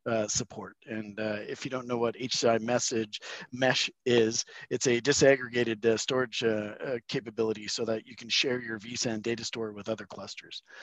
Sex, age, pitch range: male, 40-59, 110-125 Hz